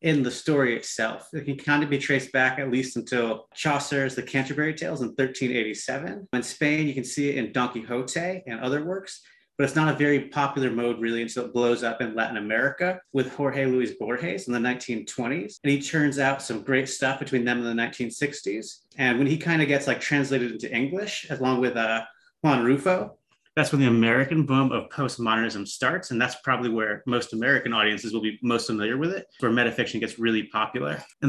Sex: male